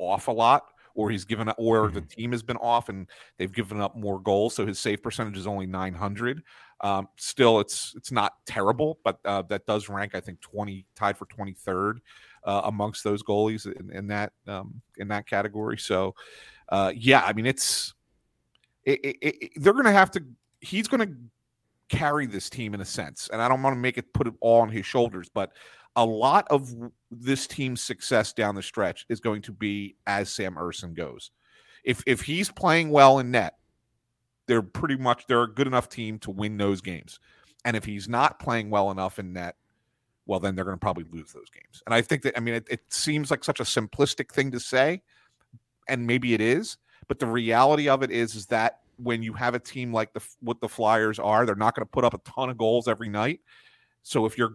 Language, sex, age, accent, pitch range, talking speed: English, male, 40-59, American, 105-130 Hz, 210 wpm